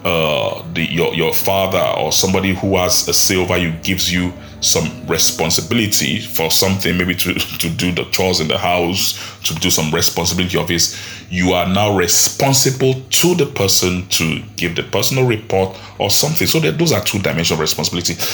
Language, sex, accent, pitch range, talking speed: English, male, Nigerian, 90-110 Hz, 180 wpm